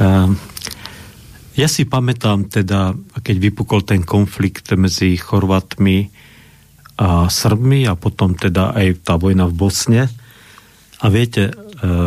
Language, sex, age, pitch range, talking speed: Slovak, male, 50-69, 95-110 Hz, 110 wpm